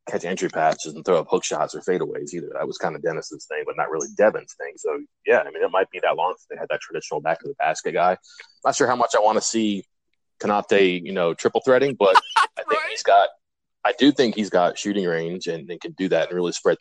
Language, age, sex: English, 30-49, male